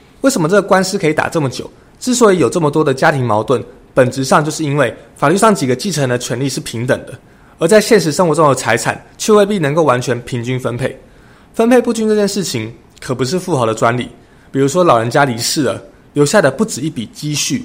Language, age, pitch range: Chinese, 20-39, 130-185 Hz